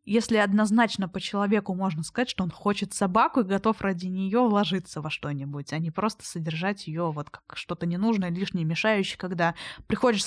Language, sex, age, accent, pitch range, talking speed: Russian, female, 20-39, native, 180-215 Hz, 175 wpm